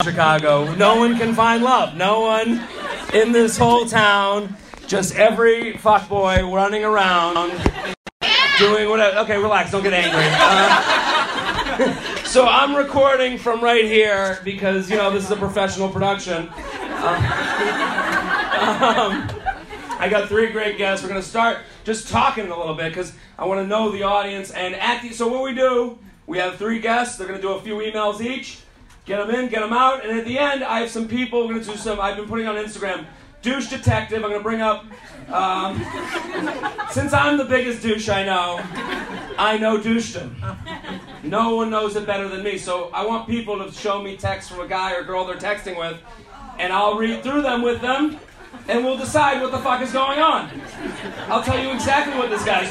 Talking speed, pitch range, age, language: 190 wpm, 195-240 Hz, 30-49, English